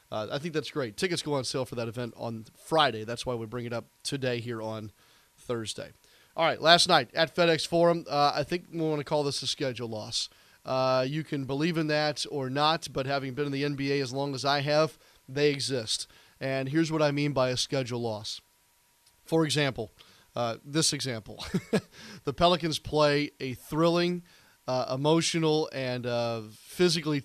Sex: male